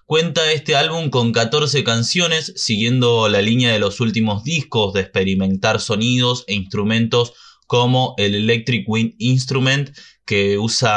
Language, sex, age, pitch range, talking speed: Spanish, male, 20-39, 110-145 Hz, 135 wpm